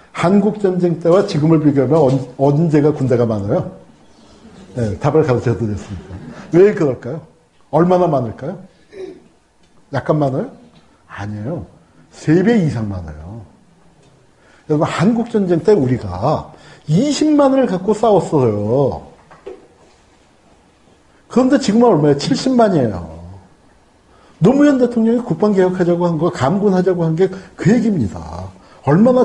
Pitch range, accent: 140-195 Hz, native